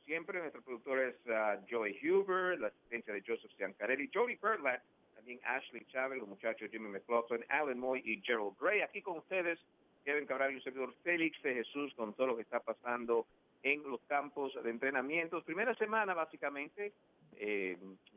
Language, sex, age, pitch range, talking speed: English, male, 50-69, 100-140 Hz, 170 wpm